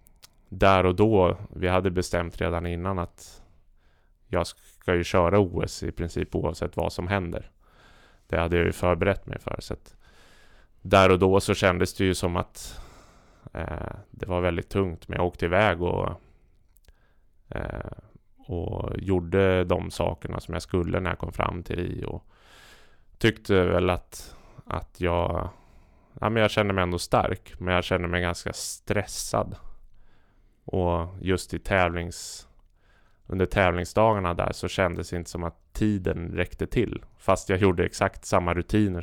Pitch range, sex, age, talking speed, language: 85-100 Hz, male, 20-39, 160 wpm, Swedish